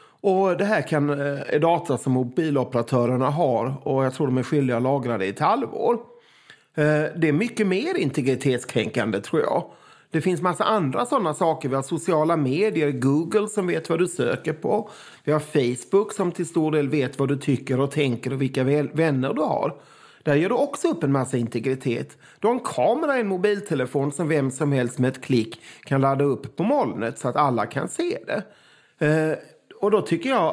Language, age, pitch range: Swedish, 30-49, 135-180 Hz